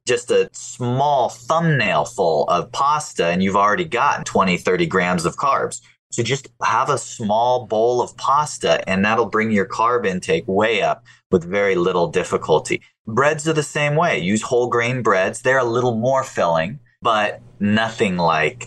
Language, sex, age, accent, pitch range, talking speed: English, male, 30-49, American, 90-125 Hz, 170 wpm